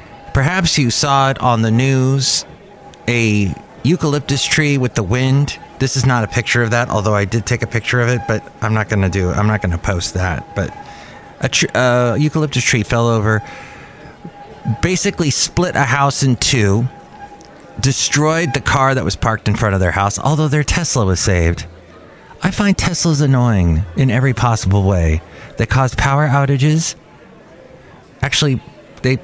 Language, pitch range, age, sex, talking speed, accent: English, 110-145 Hz, 30-49, male, 170 wpm, American